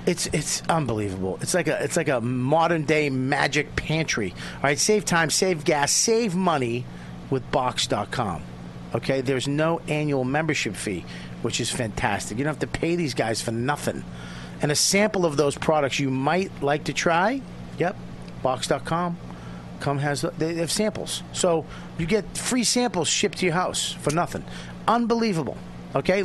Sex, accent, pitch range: male, American, 110-170 Hz